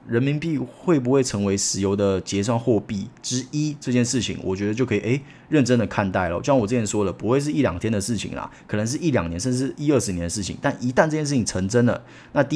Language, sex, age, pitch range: Chinese, male, 30-49, 105-145 Hz